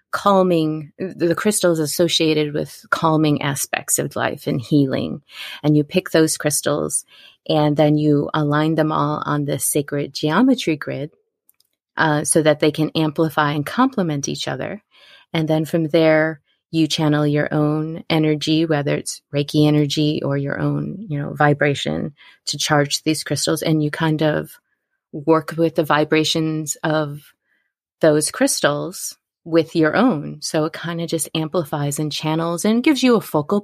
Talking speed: 155 wpm